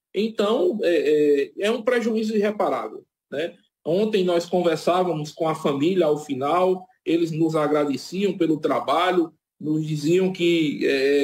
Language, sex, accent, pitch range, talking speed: Portuguese, male, Brazilian, 155-210 Hz, 135 wpm